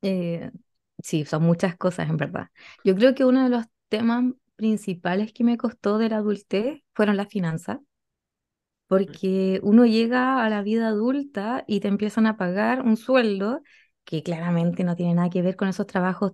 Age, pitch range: 20-39, 190-235 Hz